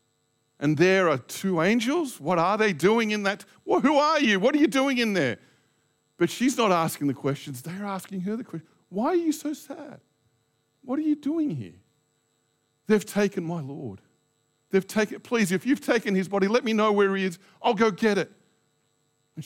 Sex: male